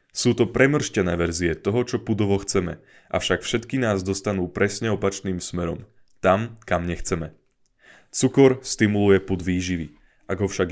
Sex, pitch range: male, 90-125 Hz